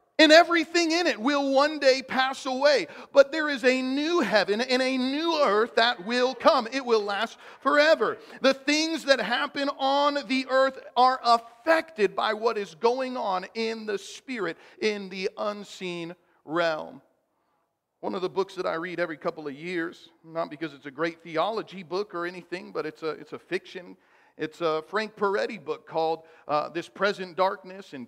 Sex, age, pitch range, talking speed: male, 40-59, 175-240 Hz, 180 wpm